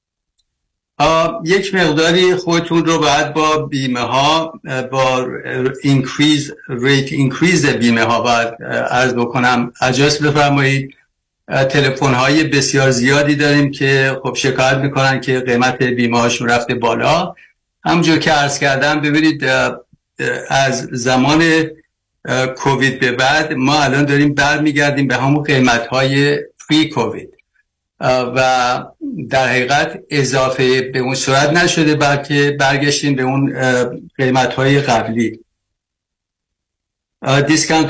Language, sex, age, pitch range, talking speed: Persian, male, 60-79, 125-145 Hz, 110 wpm